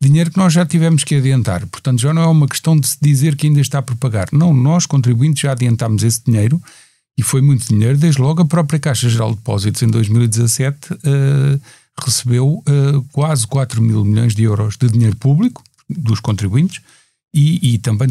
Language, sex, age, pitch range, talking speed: Portuguese, male, 50-69, 115-150 Hz, 195 wpm